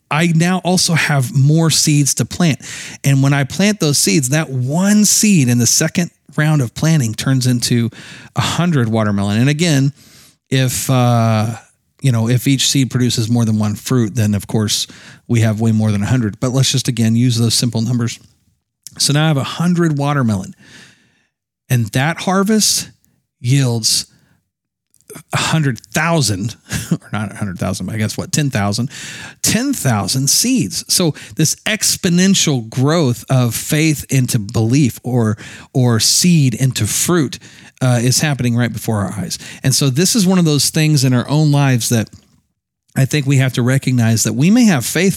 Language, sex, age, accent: English, male, 40-59, American